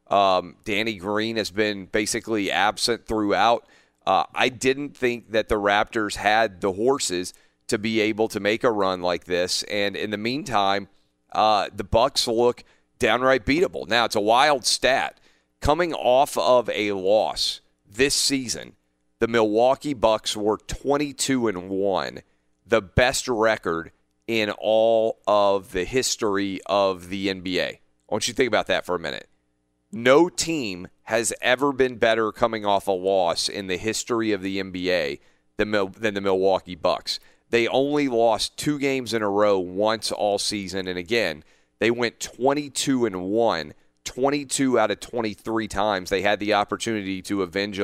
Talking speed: 155 wpm